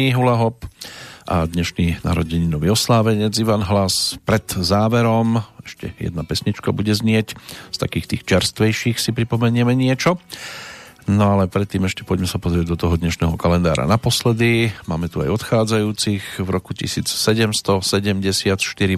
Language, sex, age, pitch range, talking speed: Slovak, male, 50-69, 95-115 Hz, 125 wpm